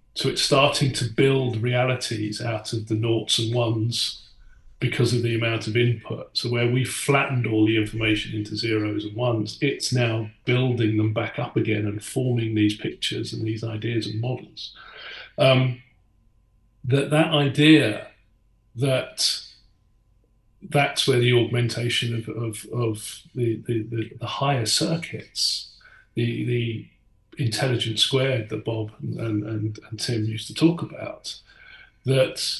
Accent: British